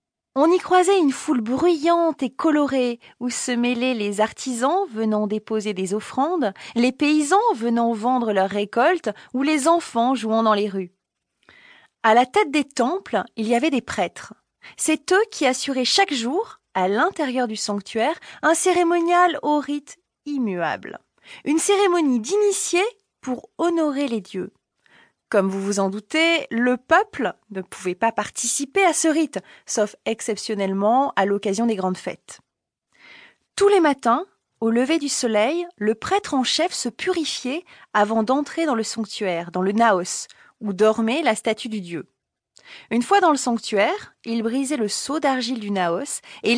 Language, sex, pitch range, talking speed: French, female, 215-320 Hz, 160 wpm